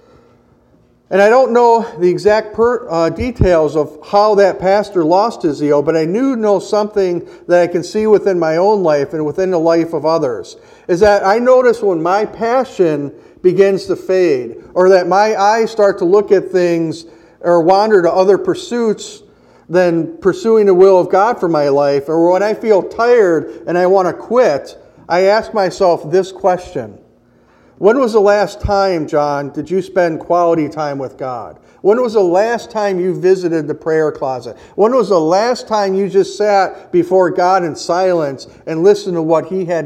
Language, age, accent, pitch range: English, 50-69, American, 170-210 Hz